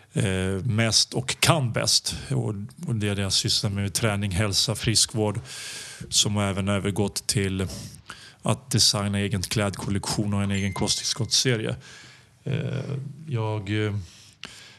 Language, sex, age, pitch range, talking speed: English, male, 30-49, 105-130 Hz, 110 wpm